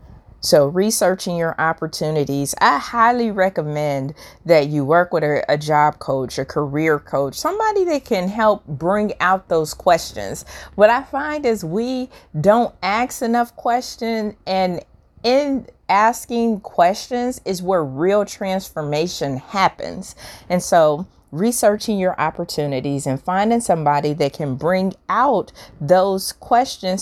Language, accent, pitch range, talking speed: English, American, 150-225 Hz, 130 wpm